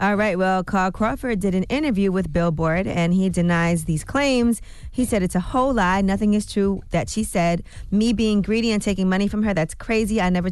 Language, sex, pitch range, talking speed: English, female, 170-205 Hz, 225 wpm